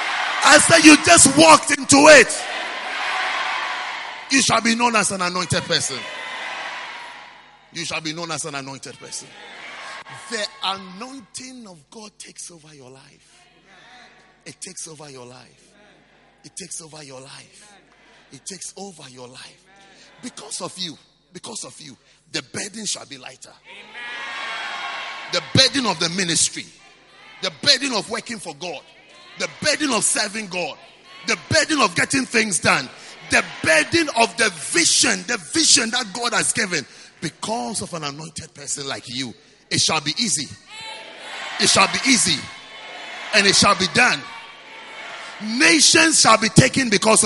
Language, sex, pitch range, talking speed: English, male, 175-275 Hz, 145 wpm